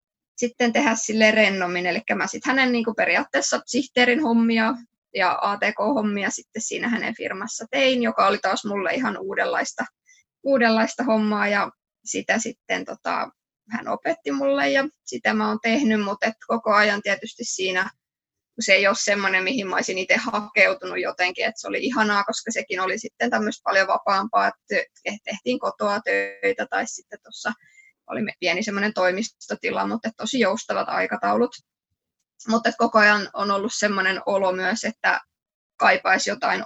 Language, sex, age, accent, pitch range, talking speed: Finnish, female, 20-39, native, 195-245 Hz, 145 wpm